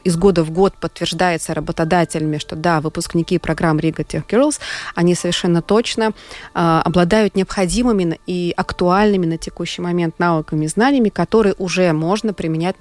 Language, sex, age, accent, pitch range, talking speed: Russian, female, 20-39, native, 165-200 Hz, 145 wpm